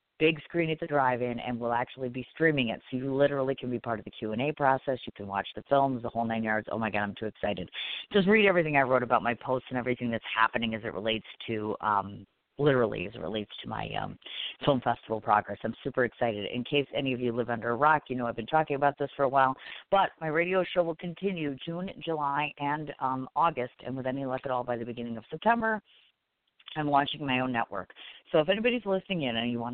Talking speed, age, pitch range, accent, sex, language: 240 wpm, 50-69, 115-145 Hz, American, female, English